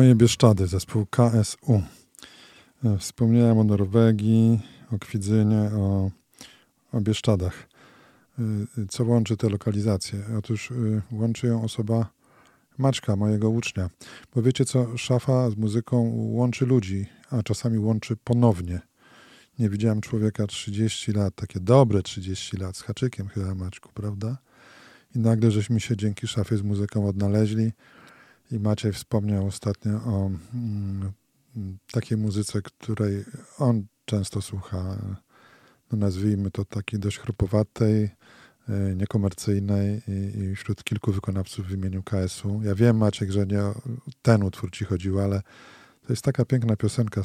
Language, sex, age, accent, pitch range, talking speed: Polish, male, 20-39, native, 100-115 Hz, 125 wpm